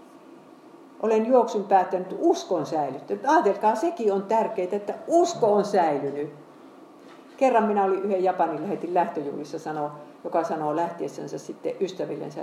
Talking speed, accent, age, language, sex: 115 wpm, native, 50-69, Finnish, female